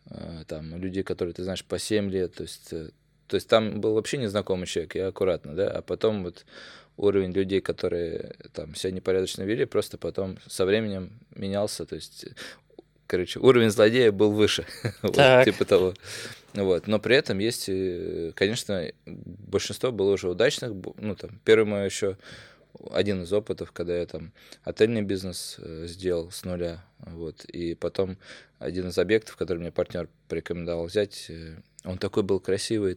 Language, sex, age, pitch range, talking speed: Russian, male, 20-39, 90-105 Hz, 155 wpm